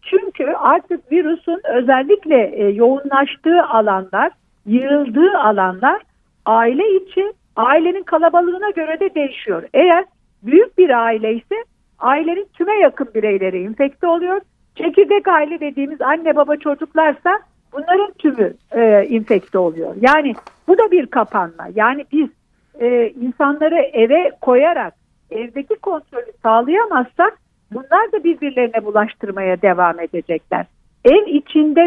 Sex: female